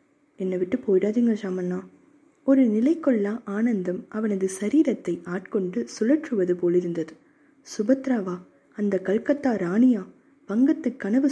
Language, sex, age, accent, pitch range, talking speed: Tamil, female, 20-39, native, 185-260 Hz, 100 wpm